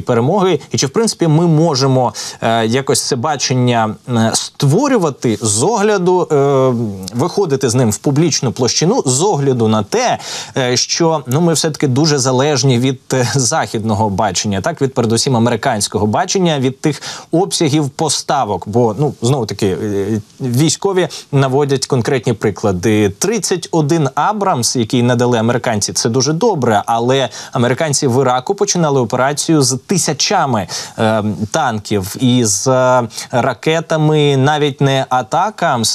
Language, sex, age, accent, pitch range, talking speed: Ukrainian, male, 20-39, native, 120-155 Hz, 125 wpm